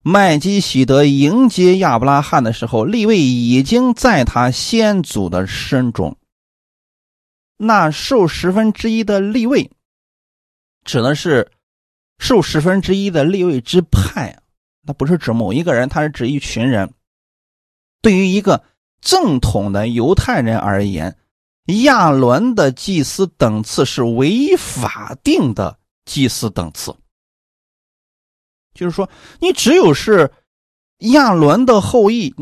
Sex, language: male, Chinese